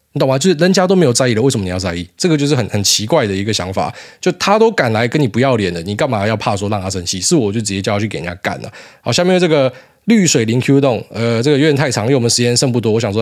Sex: male